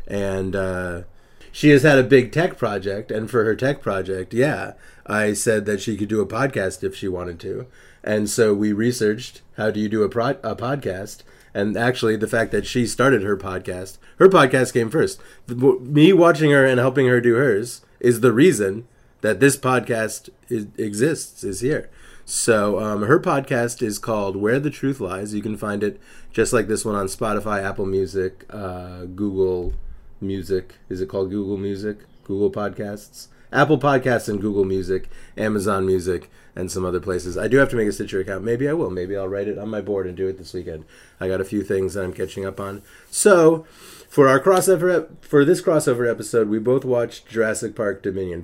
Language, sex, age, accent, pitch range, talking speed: English, male, 30-49, American, 95-125 Hz, 195 wpm